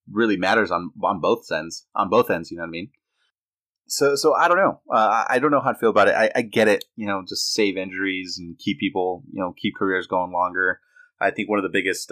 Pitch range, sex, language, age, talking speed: 95-140 Hz, male, English, 20-39, 255 wpm